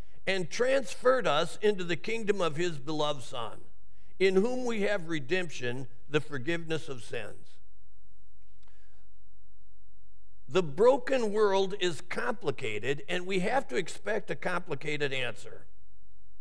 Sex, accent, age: male, American, 50-69